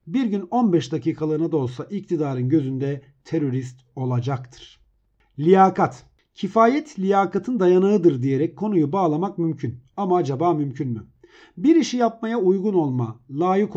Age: 50-69